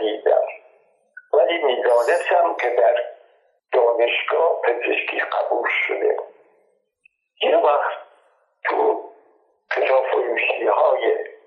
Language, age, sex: Arabic, 60-79, male